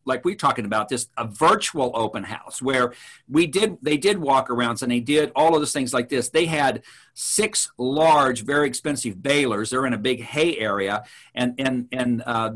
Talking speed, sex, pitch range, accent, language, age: 200 wpm, male, 125-150 Hz, American, English, 50-69